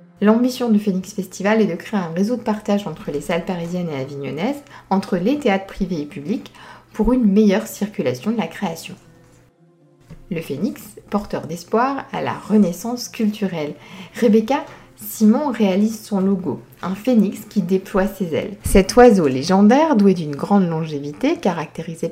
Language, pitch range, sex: French, 175-215 Hz, female